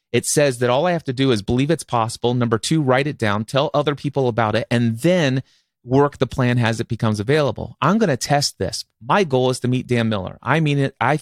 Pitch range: 120-155 Hz